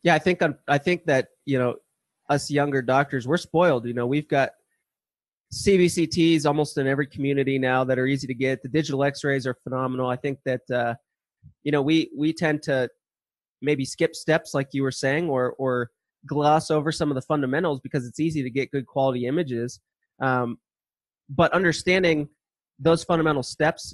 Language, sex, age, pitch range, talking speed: English, male, 20-39, 130-150 Hz, 180 wpm